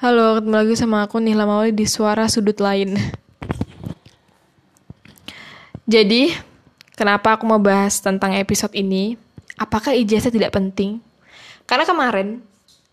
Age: 10-29